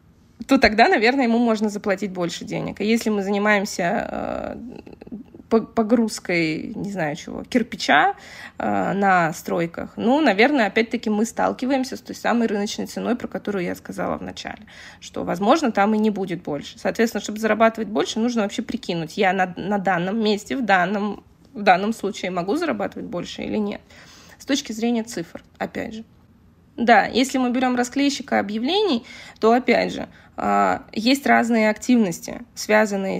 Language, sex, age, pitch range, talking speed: Russian, female, 20-39, 195-235 Hz, 155 wpm